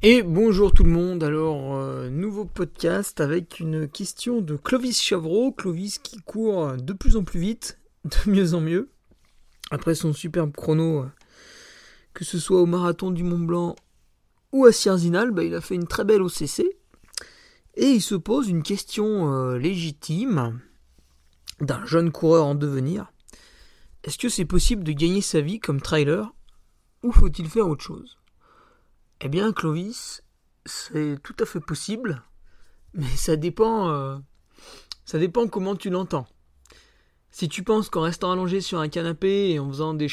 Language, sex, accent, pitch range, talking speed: French, male, French, 150-200 Hz, 160 wpm